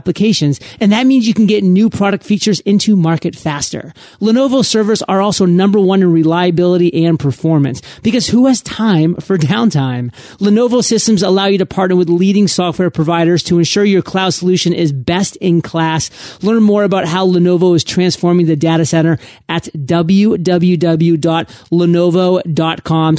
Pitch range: 160-200 Hz